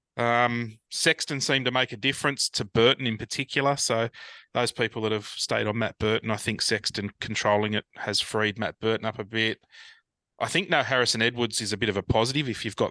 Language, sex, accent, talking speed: English, male, Australian, 215 wpm